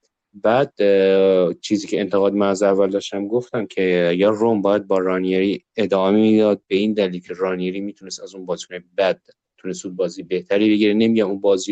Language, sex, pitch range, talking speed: Persian, male, 95-115 Hz, 180 wpm